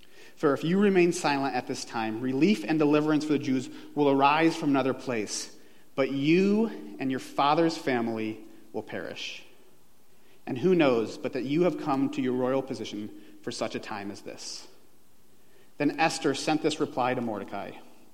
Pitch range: 125-165 Hz